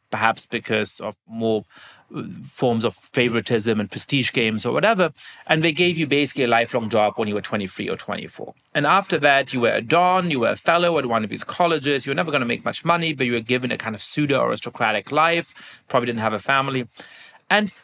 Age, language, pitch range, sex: 30-49, English, 125-175 Hz, male